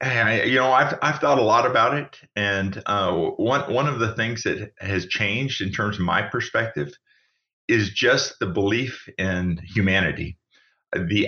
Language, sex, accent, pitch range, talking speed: English, male, American, 95-115 Hz, 165 wpm